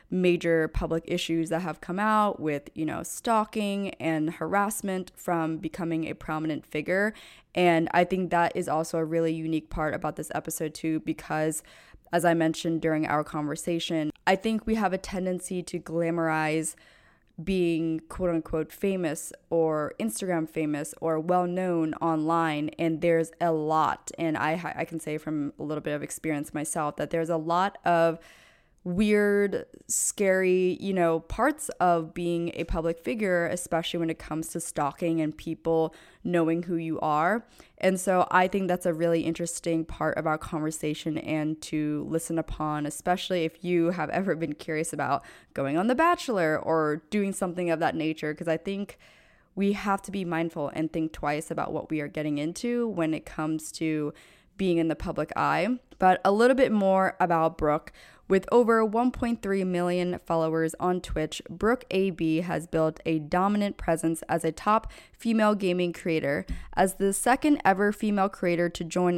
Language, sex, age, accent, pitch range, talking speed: English, female, 20-39, American, 160-185 Hz, 170 wpm